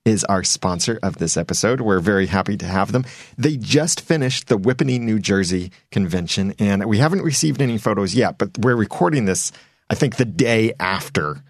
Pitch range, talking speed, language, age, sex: 95-125 Hz, 190 wpm, English, 30-49, male